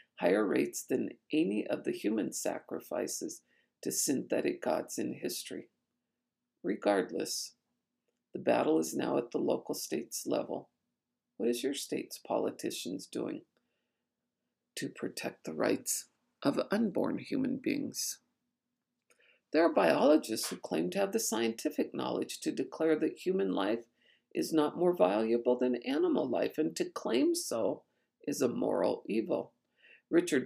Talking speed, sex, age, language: 135 wpm, female, 50-69, English